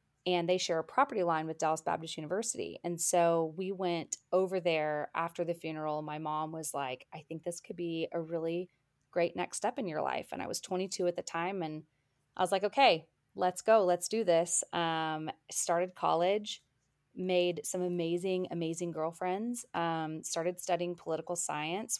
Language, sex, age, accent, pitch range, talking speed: English, female, 30-49, American, 160-185 Hz, 180 wpm